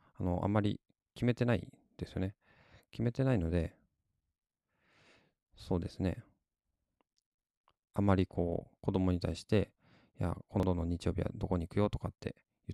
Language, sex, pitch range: Japanese, male, 90-110 Hz